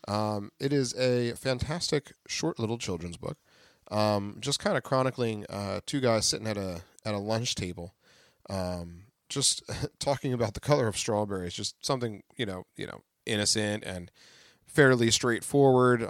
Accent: American